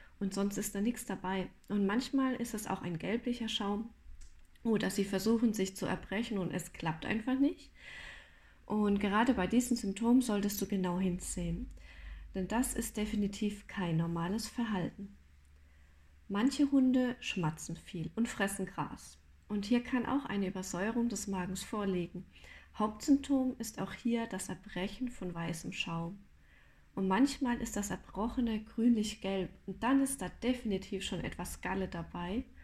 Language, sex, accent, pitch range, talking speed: German, female, German, 180-230 Hz, 150 wpm